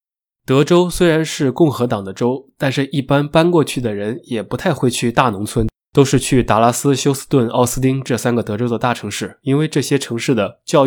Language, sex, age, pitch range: Chinese, male, 20-39, 115-140 Hz